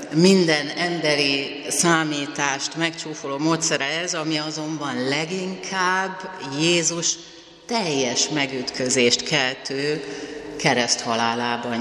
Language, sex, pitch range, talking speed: Hungarian, female, 135-165 Hz, 70 wpm